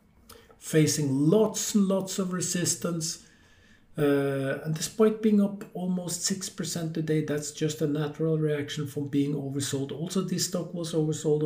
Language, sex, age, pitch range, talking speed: English, male, 50-69, 140-170 Hz, 140 wpm